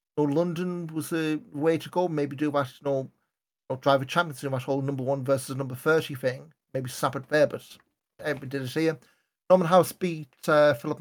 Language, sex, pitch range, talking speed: English, male, 135-160 Hz, 235 wpm